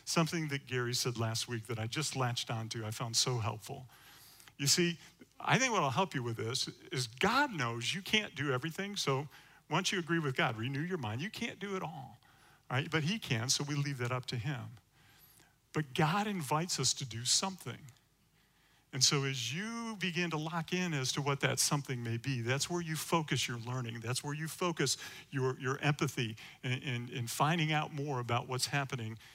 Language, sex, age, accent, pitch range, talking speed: English, male, 50-69, American, 125-165 Hz, 205 wpm